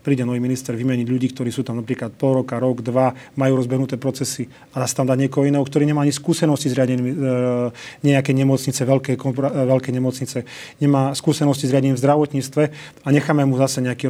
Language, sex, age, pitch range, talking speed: Slovak, male, 30-49, 125-140 Hz, 190 wpm